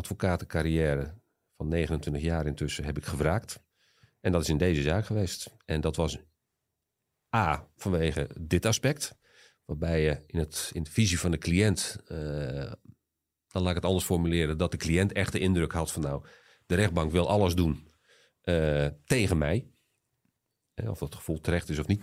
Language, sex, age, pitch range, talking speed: Dutch, male, 40-59, 75-95 Hz, 175 wpm